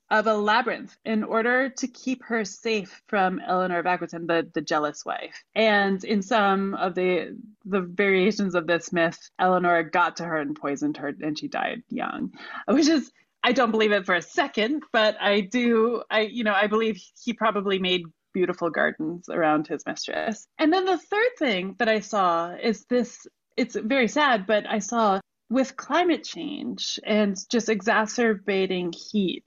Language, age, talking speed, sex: English, 20-39, 175 wpm, female